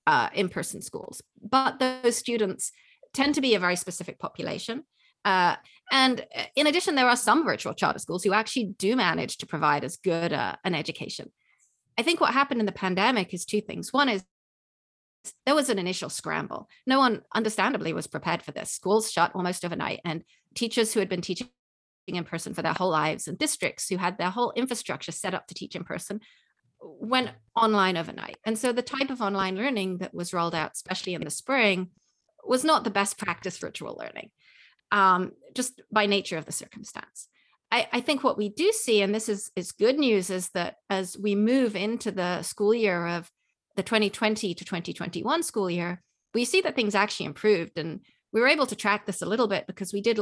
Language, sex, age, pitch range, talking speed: English, female, 30-49, 185-240 Hz, 200 wpm